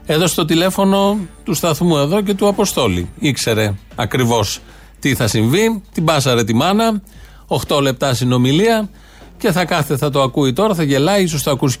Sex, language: male, Greek